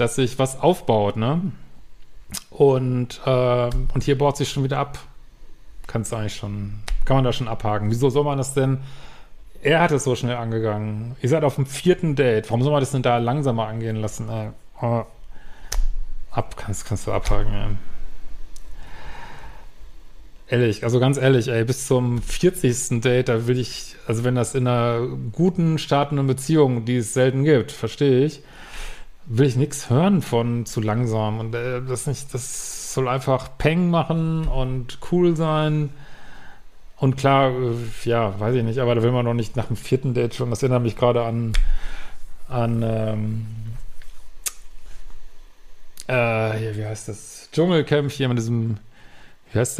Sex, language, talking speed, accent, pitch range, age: male, German, 165 wpm, German, 115-135 Hz, 40-59